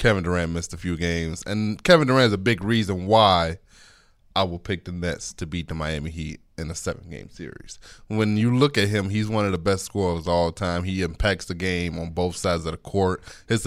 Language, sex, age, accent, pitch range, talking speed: English, male, 20-39, American, 90-110 Hz, 235 wpm